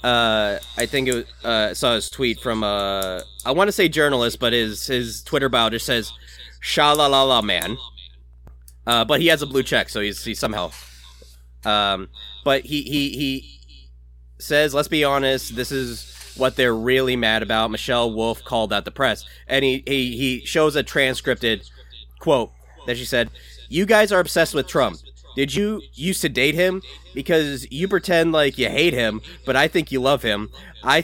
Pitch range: 110-150 Hz